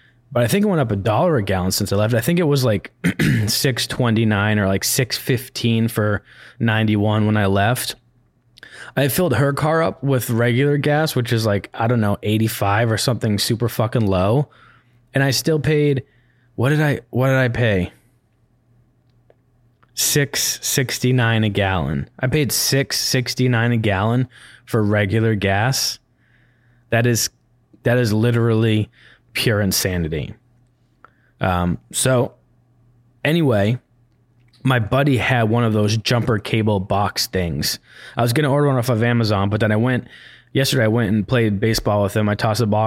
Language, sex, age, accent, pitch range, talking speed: English, male, 20-39, American, 105-125 Hz, 160 wpm